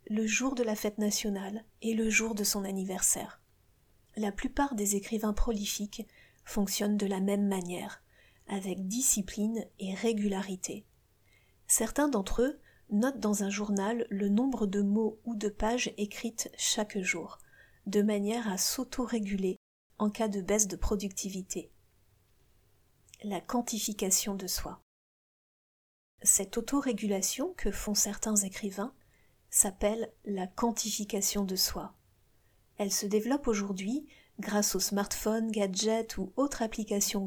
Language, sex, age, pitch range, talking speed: French, female, 40-59, 200-225 Hz, 125 wpm